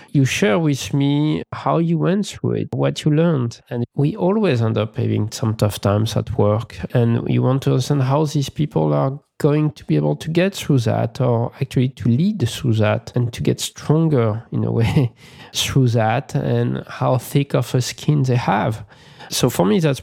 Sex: male